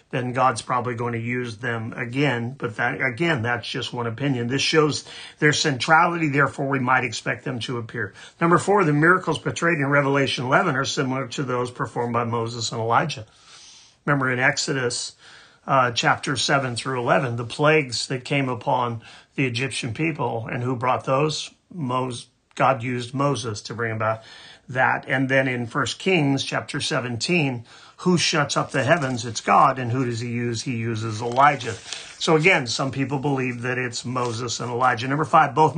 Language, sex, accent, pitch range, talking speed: English, male, American, 120-145 Hz, 180 wpm